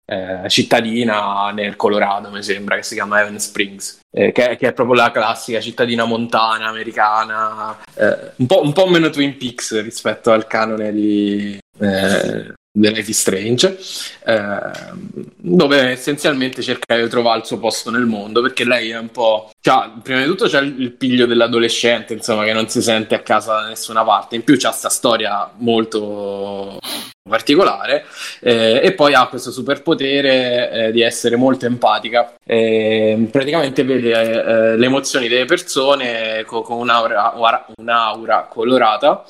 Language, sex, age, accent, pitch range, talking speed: Italian, male, 20-39, native, 110-125 Hz, 155 wpm